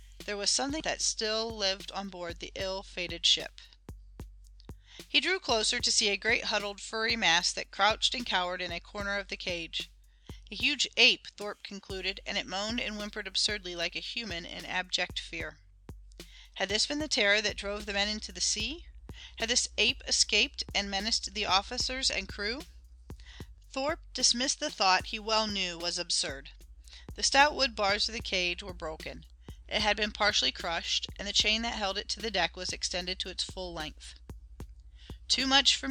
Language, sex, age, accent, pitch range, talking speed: English, female, 40-59, American, 180-225 Hz, 185 wpm